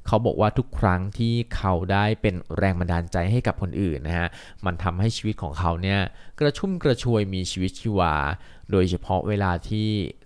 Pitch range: 90-110 Hz